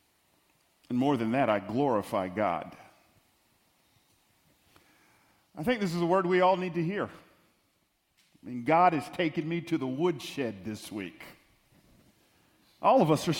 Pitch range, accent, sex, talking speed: 150-190 Hz, American, male, 150 wpm